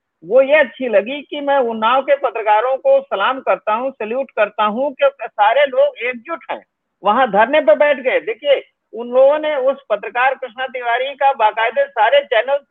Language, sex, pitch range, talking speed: Hindi, male, 220-270 Hz, 175 wpm